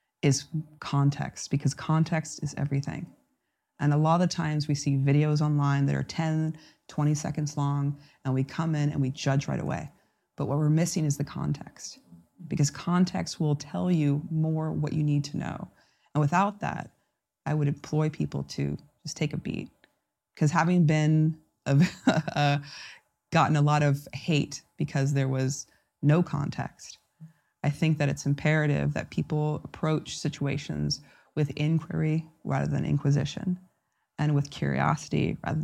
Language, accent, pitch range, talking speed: English, American, 140-155 Hz, 155 wpm